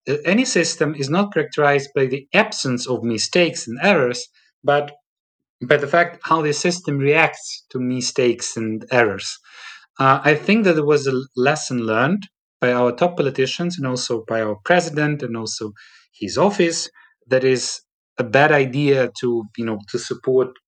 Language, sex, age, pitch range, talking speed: English, male, 30-49, 130-170 Hz, 165 wpm